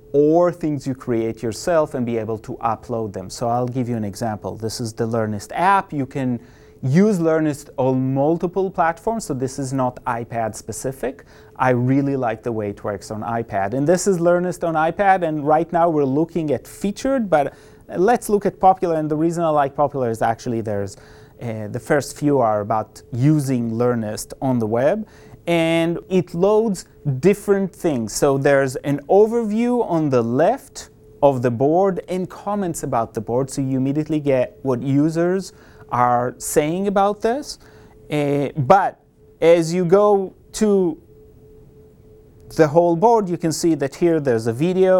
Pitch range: 125-175 Hz